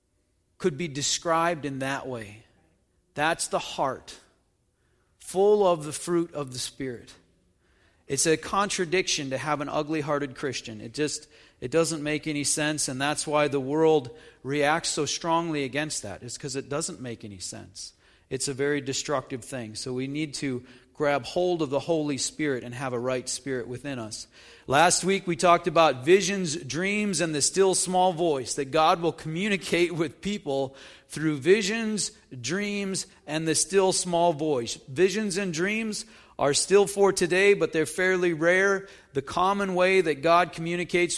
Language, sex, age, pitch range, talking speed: English, male, 40-59, 145-190 Hz, 165 wpm